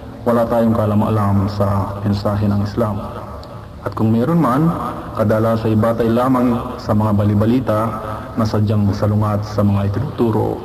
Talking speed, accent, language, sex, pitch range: 135 wpm, native, Filipino, male, 105-125 Hz